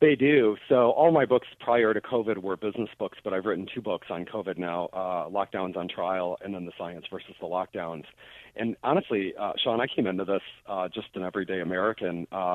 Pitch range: 90-110 Hz